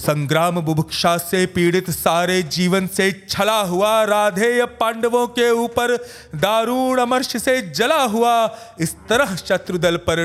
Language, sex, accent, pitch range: Hindi, male, native, 160-230 Hz